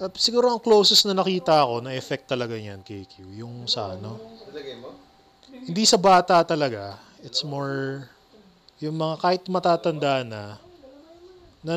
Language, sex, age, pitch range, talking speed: Filipino, male, 20-39, 125-175 Hz, 140 wpm